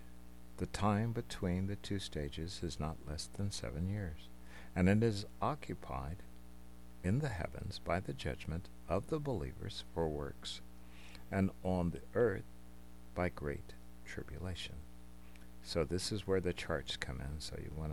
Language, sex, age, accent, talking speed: English, male, 60-79, American, 150 wpm